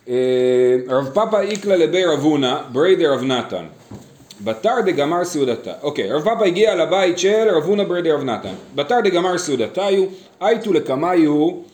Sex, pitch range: male, 145-220 Hz